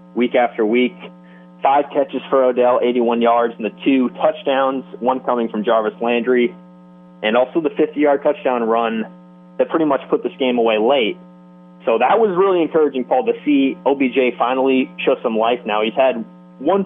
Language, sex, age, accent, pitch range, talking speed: English, male, 30-49, American, 105-150 Hz, 175 wpm